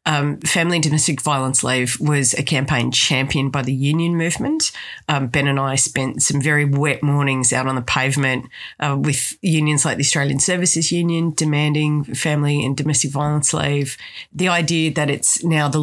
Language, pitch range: English, 140-160 Hz